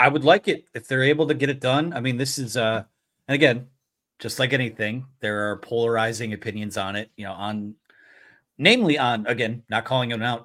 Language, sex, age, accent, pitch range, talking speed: English, male, 30-49, American, 105-130 Hz, 210 wpm